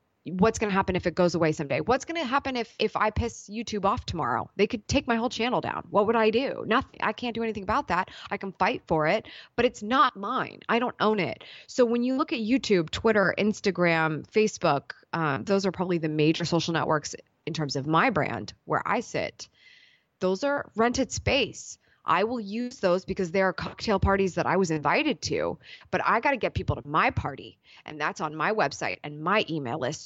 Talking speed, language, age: 225 wpm, Swedish, 20-39